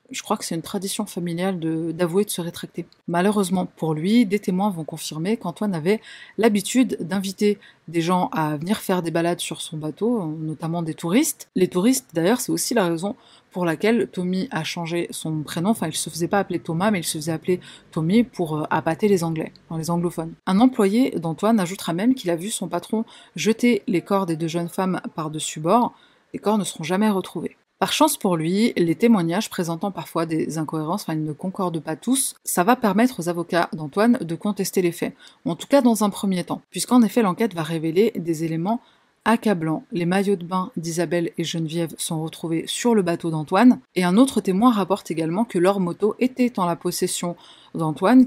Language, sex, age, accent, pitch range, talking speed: French, female, 30-49, French, 170-215 Hz, 205 wpm